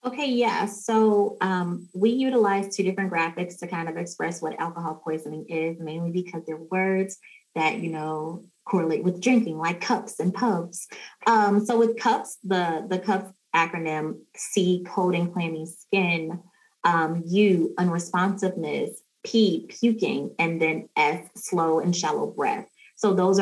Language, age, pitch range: English, 20-39, 160-195 Hz